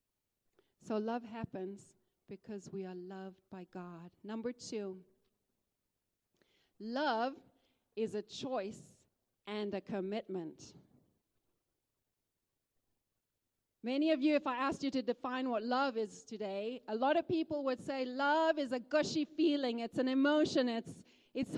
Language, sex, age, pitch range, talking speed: English, female, 40-59, 205-280 Hz, 130 wpm